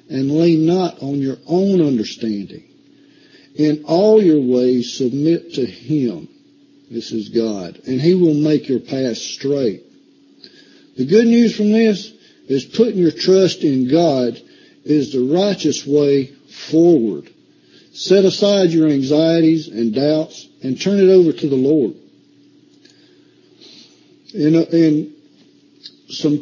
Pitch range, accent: 135-195 Hz, American